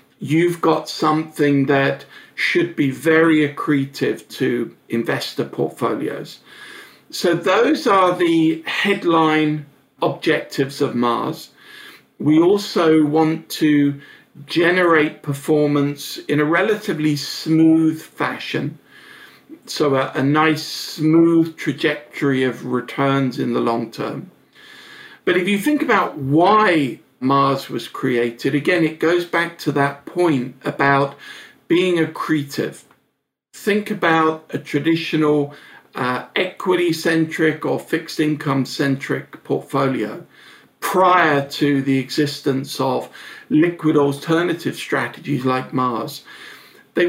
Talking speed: 105 wpm